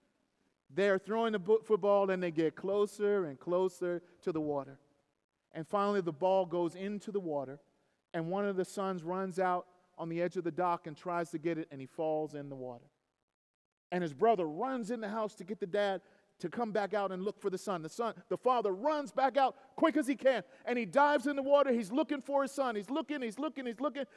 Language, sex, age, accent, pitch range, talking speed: English, male, 40-59, American, 170-225 Hz, 230 wpm